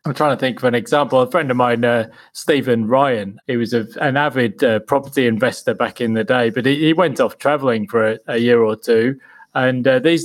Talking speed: 240 wpm